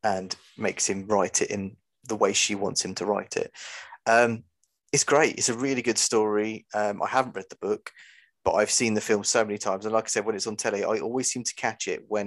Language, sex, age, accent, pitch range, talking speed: English, male, 20-39, British, 105-120 Hz, 250 wpm